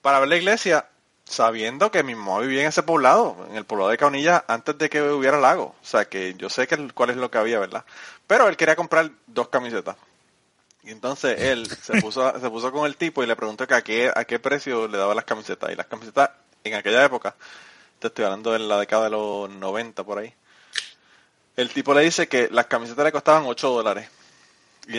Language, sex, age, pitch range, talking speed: Spanish, male, 30-49, 110-150 Hz, 220 wpm